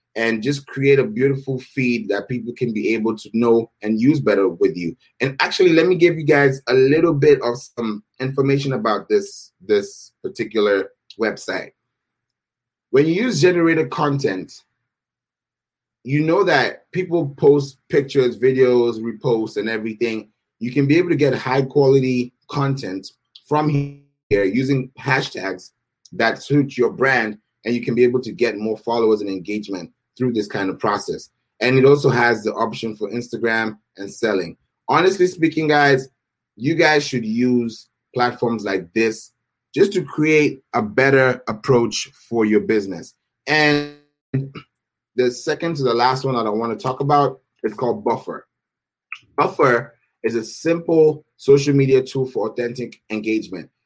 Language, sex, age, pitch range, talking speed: English, male, 30-49, 115-145 Hz, 155 wpm